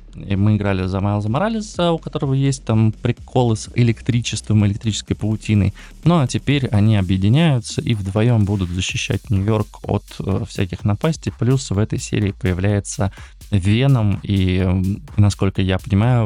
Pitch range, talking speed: 100-120 Hz, 140 wpm